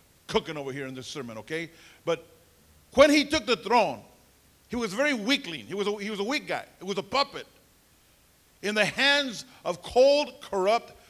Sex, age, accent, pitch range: male, 50-69, American, 165-250 Hz